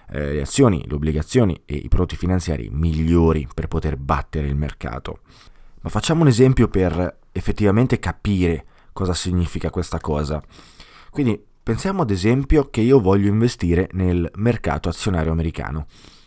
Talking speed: 135 wpm